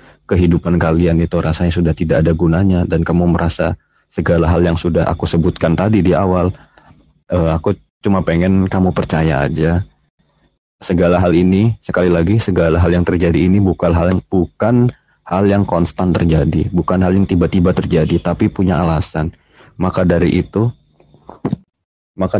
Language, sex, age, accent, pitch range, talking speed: Indonesian, male, 30-49, native, 85-95 Hz, 155 wpm